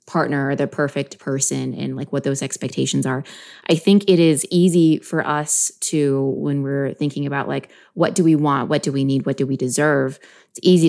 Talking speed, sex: 210 wpm, female